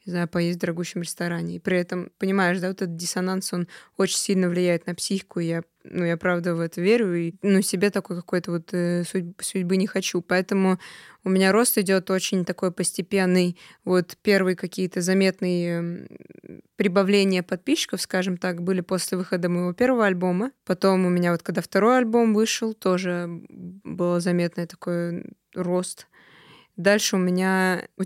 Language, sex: Russian, female